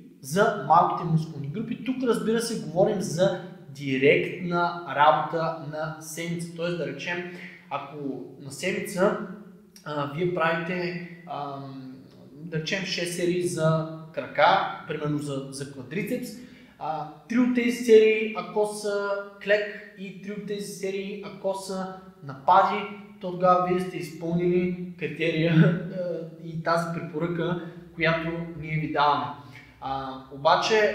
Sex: male